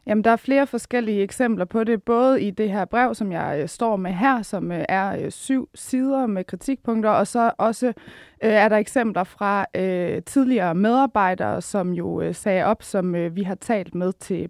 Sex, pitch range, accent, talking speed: female, 185-235 Hz, native, 175 wpm